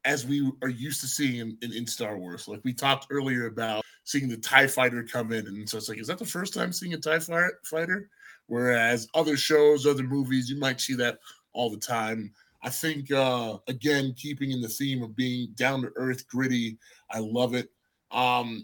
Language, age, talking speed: English, 20-39, 210 wpm